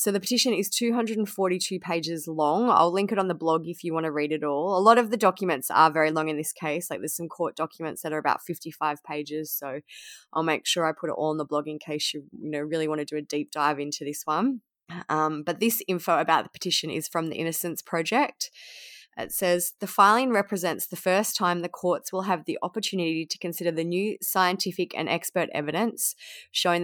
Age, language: 20-39, English